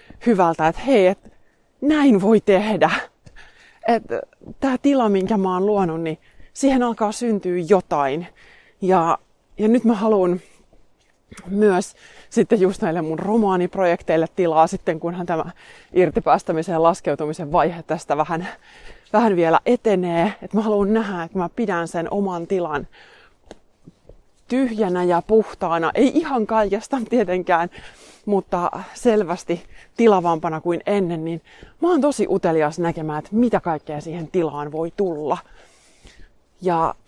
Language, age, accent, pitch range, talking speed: Finnish, 20-39, native, 170-220 Hz, 125 wpm